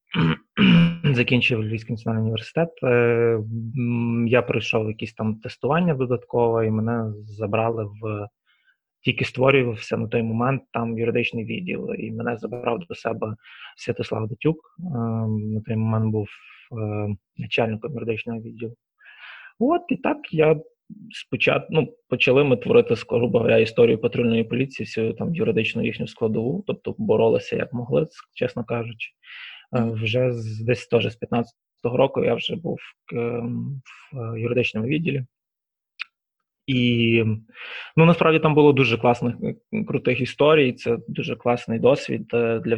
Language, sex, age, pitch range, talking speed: Ukrainian, male, 20-39, 110-130 Hz, 130 wpm